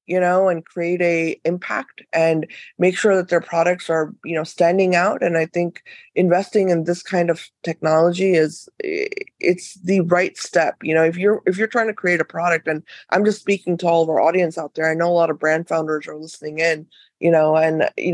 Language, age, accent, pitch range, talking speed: English, 20-39, American, 160-195 Hz, 220 wpm